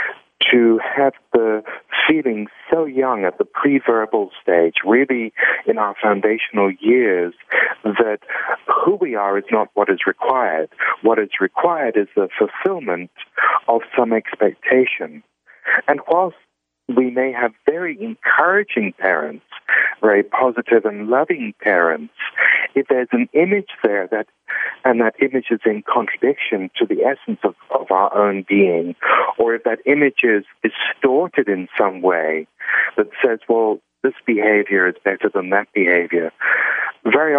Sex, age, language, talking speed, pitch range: male, 50-69, English, 140 wpm, 100-140 Hz